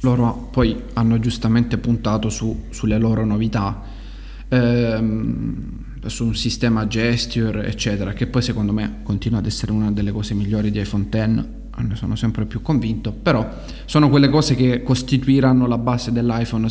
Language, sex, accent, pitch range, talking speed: Italian, male, native, 110-125 Hz, 155 wpm